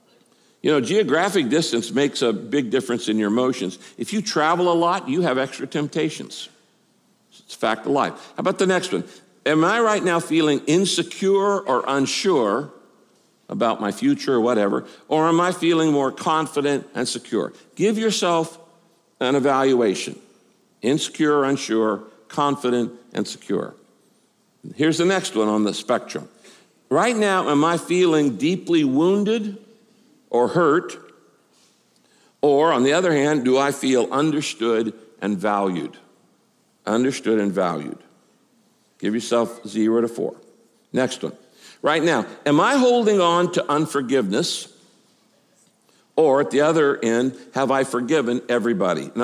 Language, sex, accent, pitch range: English, male, American, 125-175 Hz